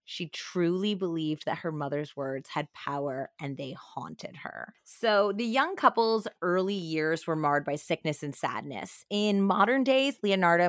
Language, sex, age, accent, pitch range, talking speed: English, female, 20-39, American, 155-210 Hz, 165 wpm